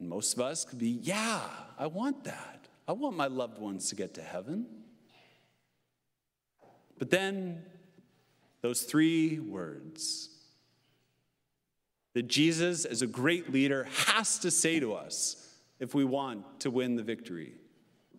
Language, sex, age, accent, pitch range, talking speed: English, male, 40-59, American, 130-175 Hz, 135 wpm